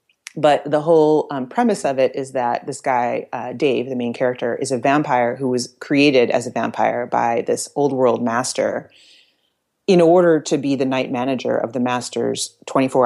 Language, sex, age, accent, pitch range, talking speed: English, female, 30-49, American, 125-150 Hz, 190 wpm